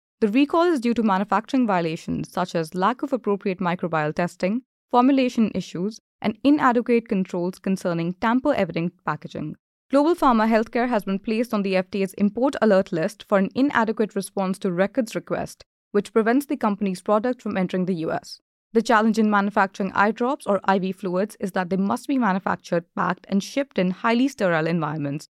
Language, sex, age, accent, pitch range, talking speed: English, female, 20-39, Indian, 185-230 Hz, 170 wpm